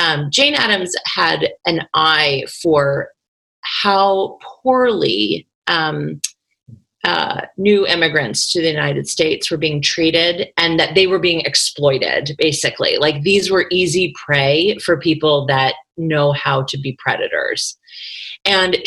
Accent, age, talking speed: American, 30-49, 130 wpm